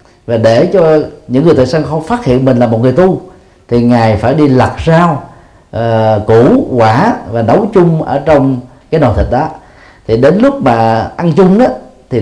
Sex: male